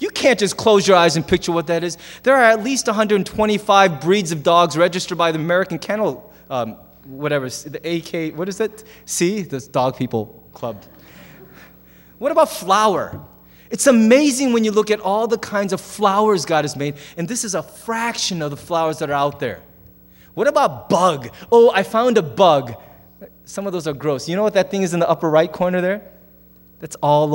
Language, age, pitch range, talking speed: English, 20-39, 125-195 Hz, 200 wpm